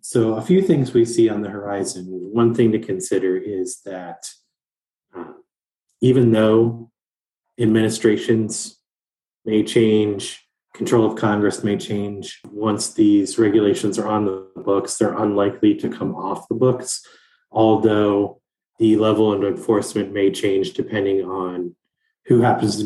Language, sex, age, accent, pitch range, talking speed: English, male, 30-49, American, 100-120 Hz, 135 wpm